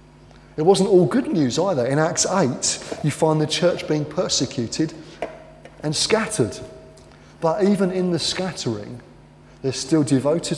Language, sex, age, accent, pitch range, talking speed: English, male, 20-39, British, 120-160 Hz, 140 wpm